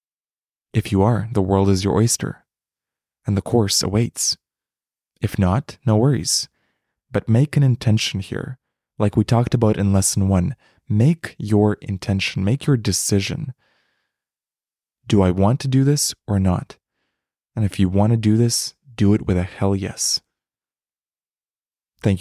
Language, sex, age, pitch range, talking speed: English, male, 20-39, 95-115 Hz, 150 wpm